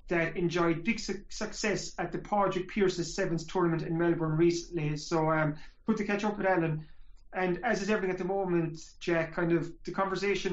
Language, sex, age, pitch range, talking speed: English, male, 30-49, 165-185 Hz, 195 wpm